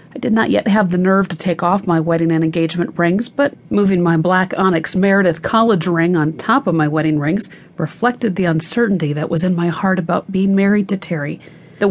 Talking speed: 215 wpm